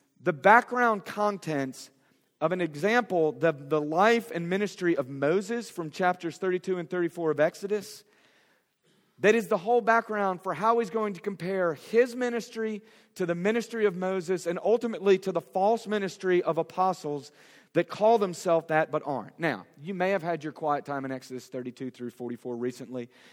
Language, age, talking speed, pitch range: English, 40-59, 170 wpm, 155-215 Hz